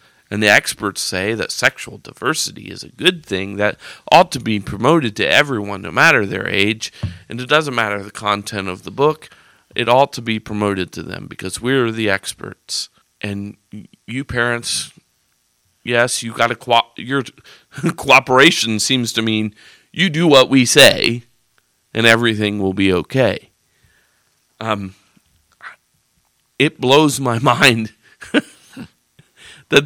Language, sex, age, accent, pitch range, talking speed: English, male, 40-59, American, 105-125 Hz, 145 wpm